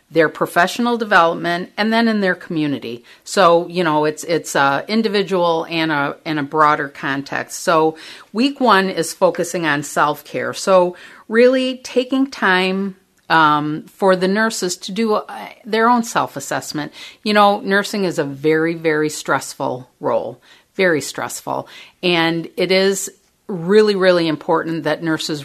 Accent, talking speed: American, 140 wpm